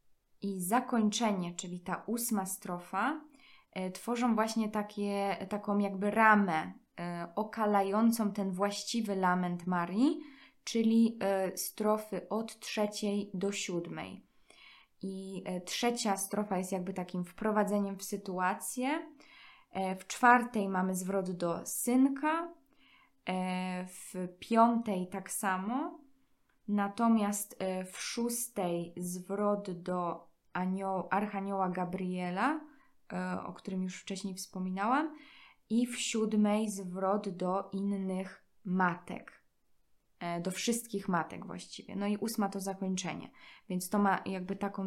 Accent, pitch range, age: native, 185-235 Hz, 20-39